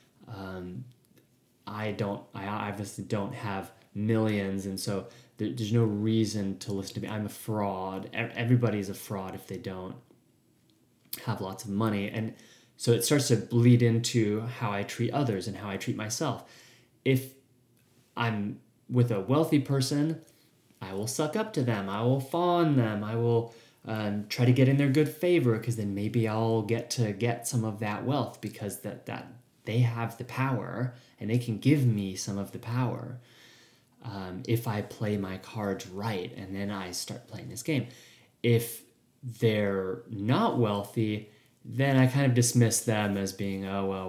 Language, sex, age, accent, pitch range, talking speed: English, male, 20-39, American, 100-125 Hz, 175 wpm